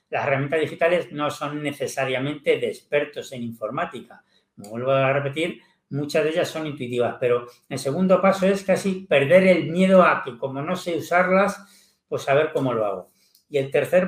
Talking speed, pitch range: 180 wpm, 140-185 Hz